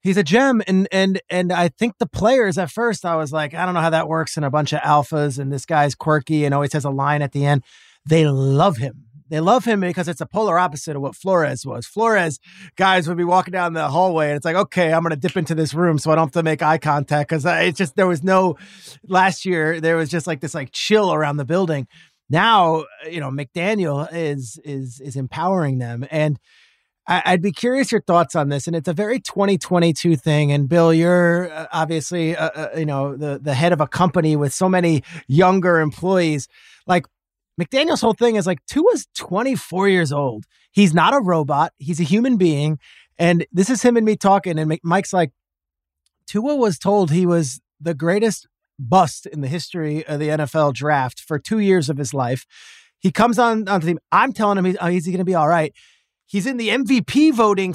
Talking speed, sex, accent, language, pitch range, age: 220 wpm, male, American, English, 150-200 Hz, 30-49